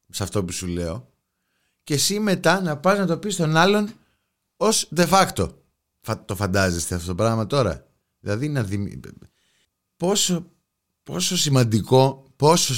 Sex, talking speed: male, 140 wpm